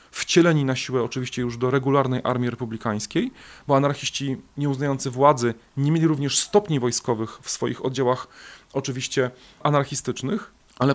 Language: Polish